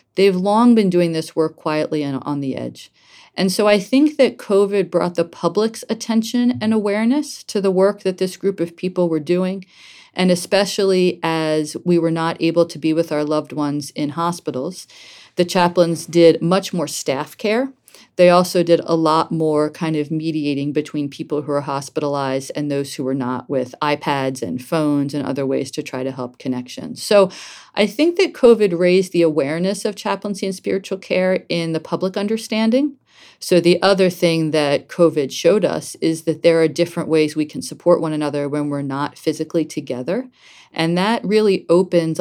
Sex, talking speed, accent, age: female, 185 wpm, American, 40-59